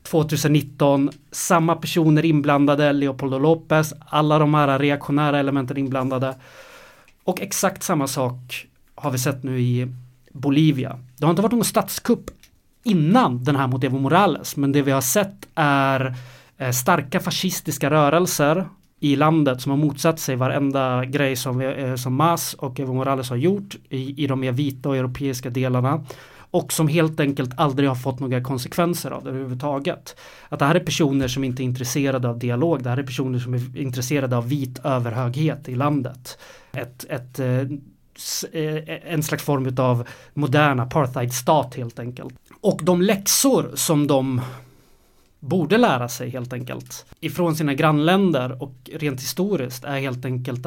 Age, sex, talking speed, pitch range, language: 30-49, male, 155 wpm, 130-155 Hz, Swedish